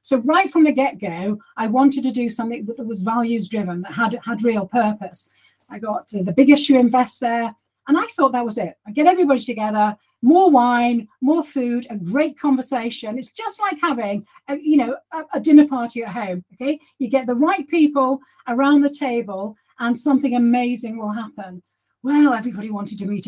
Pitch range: 220-275 Hz